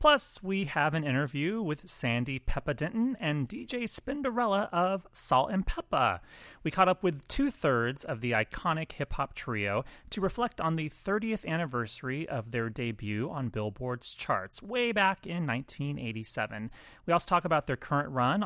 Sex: male